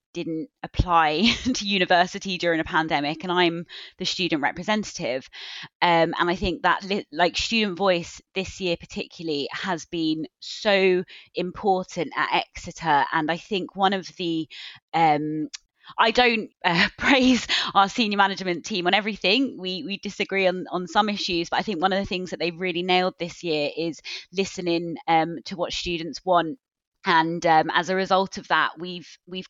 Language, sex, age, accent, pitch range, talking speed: English, female, 20-39, British, 165-190 Hz, 170 wpm